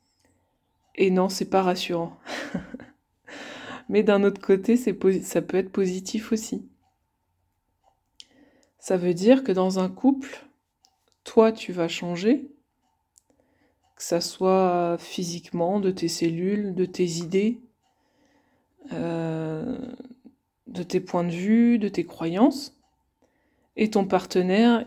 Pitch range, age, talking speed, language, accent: 185-235 Hz, 20-39, 120 wpm, French, French